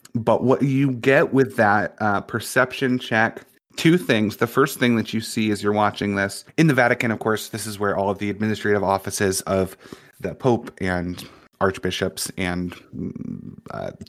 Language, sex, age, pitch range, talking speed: English, male, 30-49, 100-120 Hz, 175 wpm